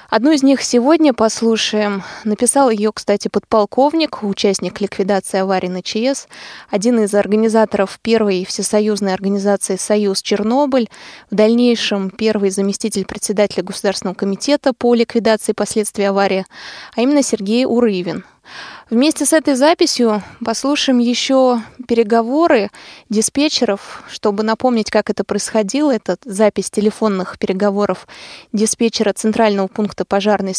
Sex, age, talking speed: female, 20-39, 115 wpm